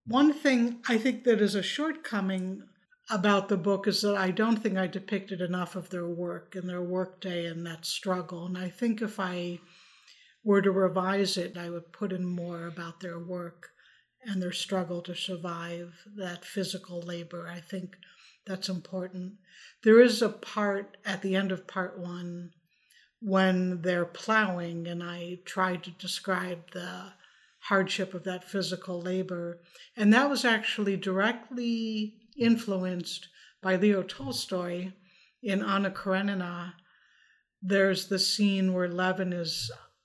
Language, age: English, 60-79